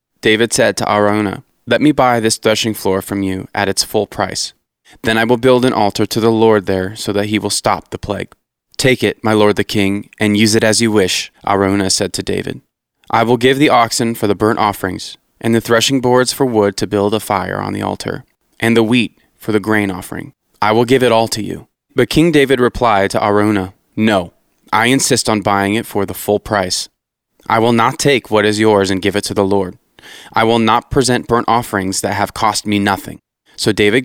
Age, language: 20-39, English